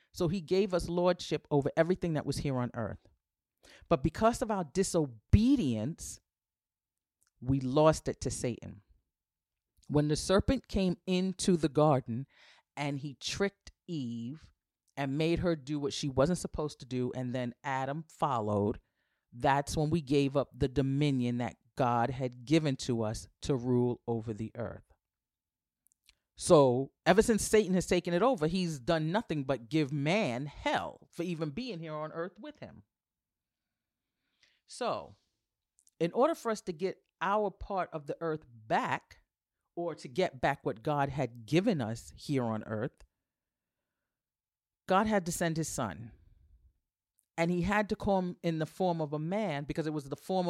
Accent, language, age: American, English, 40-59